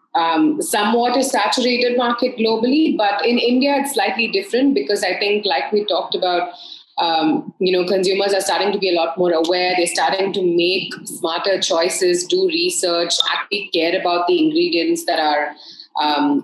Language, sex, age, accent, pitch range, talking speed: English, female, 30-49, Indian, 180-250 Hz, 170 wpm